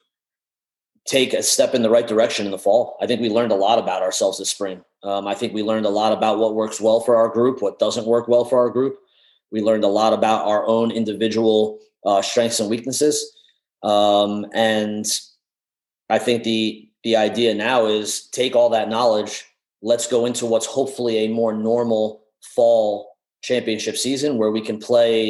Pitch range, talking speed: 105-120 Hz, 190 wpm